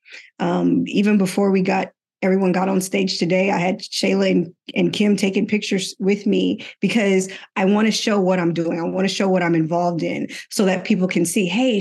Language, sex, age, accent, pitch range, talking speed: English, female, 20-39, American, 190-225 Hz, 205 wpm